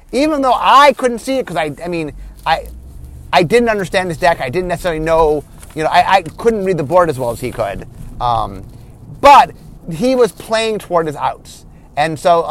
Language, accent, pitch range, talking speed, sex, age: English, American, 165-215 Hz, 210 wpm, male, 30-49